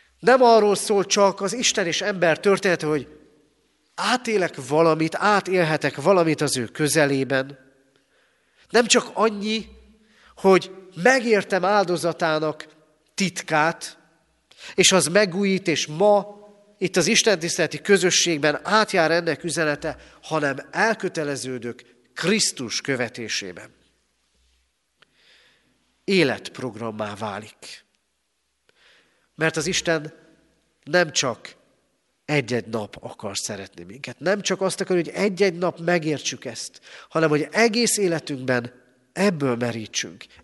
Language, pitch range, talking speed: Hungarian, 140-195 Hz, 100 wpm